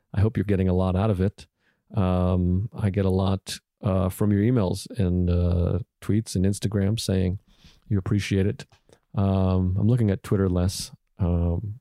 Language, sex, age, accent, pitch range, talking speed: English, male, 40-59, American, 95-105 Hz, 175 wpm